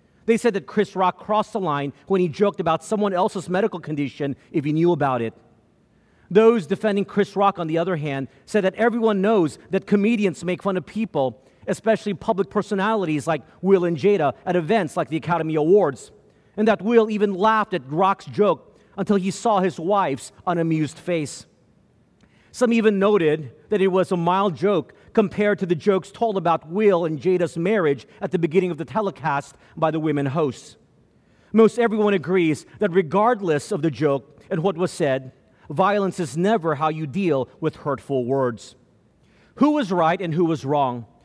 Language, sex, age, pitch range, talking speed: English, male, 40-59, 155-210 Hz, 180 wpm